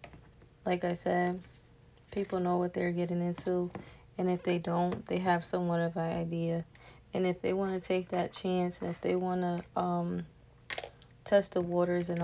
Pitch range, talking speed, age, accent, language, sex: 170-190 Hz, 180 wpm, 20-39, American, English, female